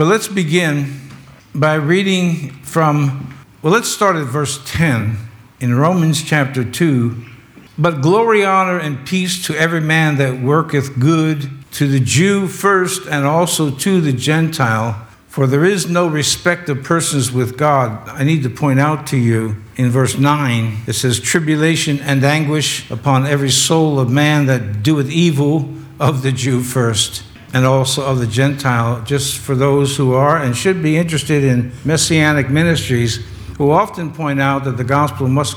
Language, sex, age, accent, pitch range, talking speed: English, male, 60-79, American, 125-160 Hz, 165 wpm